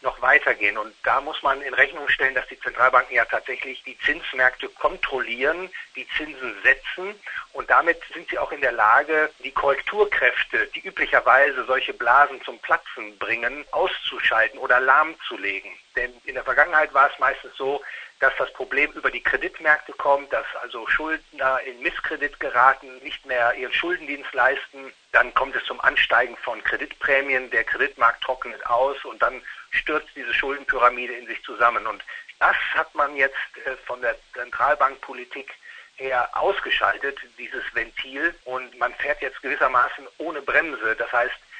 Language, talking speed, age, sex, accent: German, 155 wpm, 50-69, male, German